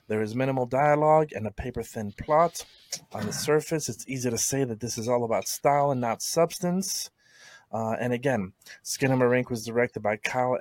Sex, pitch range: male, 115-150 Hz